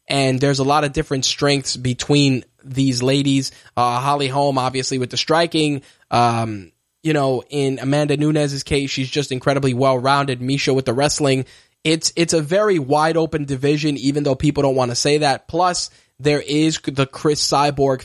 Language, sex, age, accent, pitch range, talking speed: English, male, 20-39, American, 130-150 Hz, 175 wpm